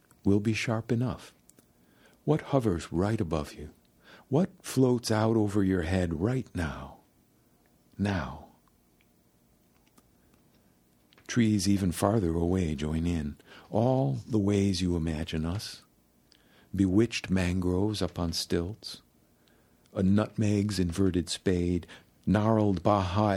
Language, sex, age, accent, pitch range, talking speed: English, male, 60-79, American, 75-110 Hz, 105 wpm